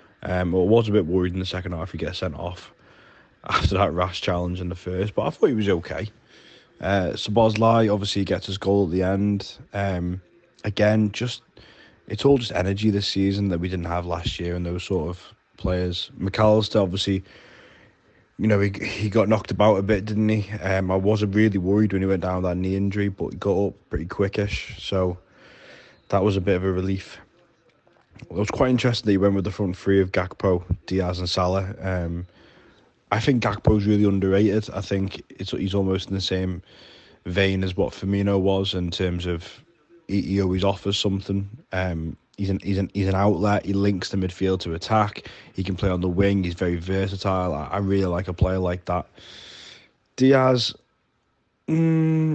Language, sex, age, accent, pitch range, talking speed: English, male, 20-39, British, 95-110 Hz, 195 wpm